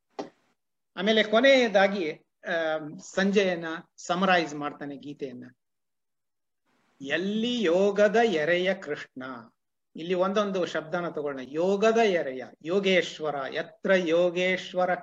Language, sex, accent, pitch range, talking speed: Kannada, male, native, 145-200 Hz, 80 wpm